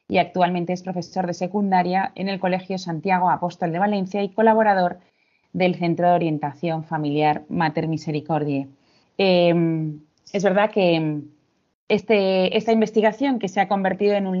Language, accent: Spanish, Spanish